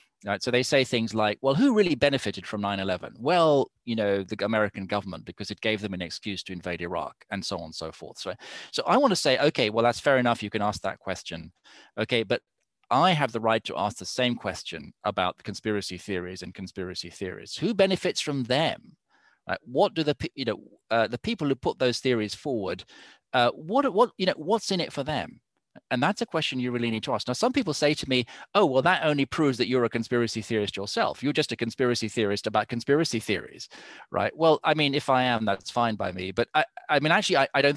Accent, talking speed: British, 225 wpm